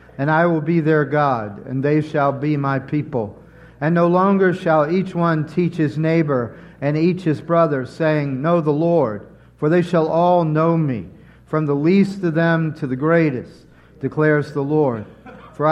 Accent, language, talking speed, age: American, English, 180 wpm, 50-69